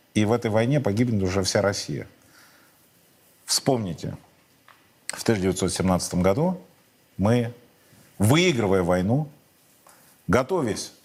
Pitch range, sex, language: 100-135 Hz, male, Russian